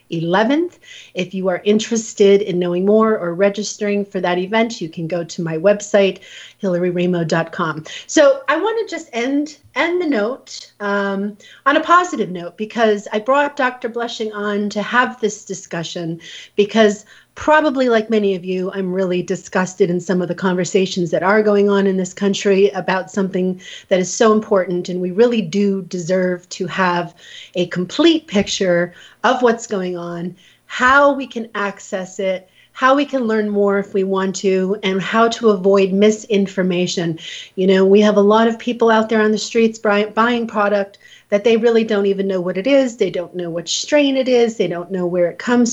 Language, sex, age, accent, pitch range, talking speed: English, female, 40-59, American, 185-220 Hz, 185 wpm